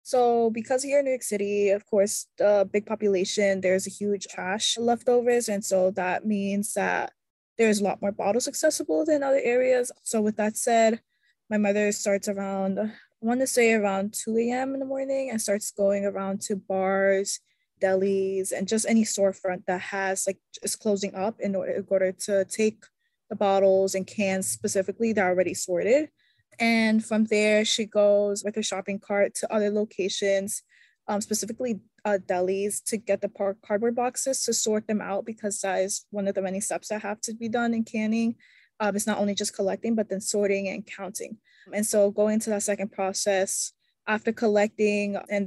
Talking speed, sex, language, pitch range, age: 185 wpm, female, English, 195-225 Hz, 20-39